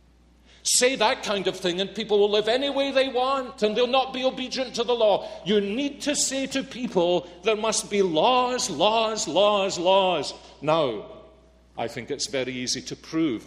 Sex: male